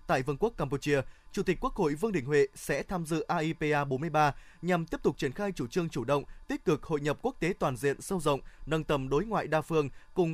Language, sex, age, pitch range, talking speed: Vietnamese, male, 20-39, 145-190 Hz, 245 wpm